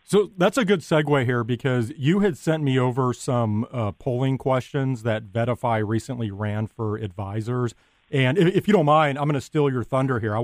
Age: 40-59